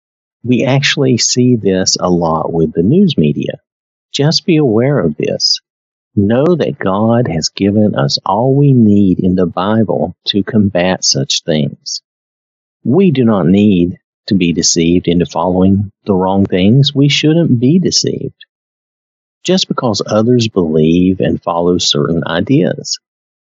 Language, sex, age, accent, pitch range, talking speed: English, male, 50-69, American, 90-125 Hz, 140 wpm